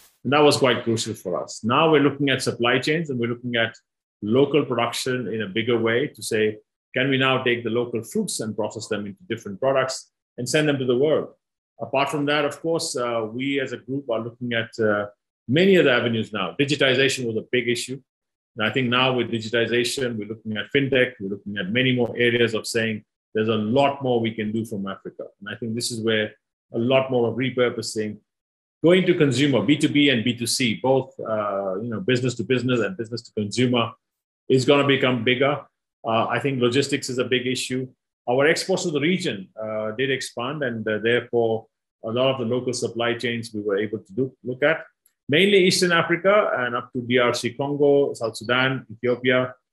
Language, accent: English, Indian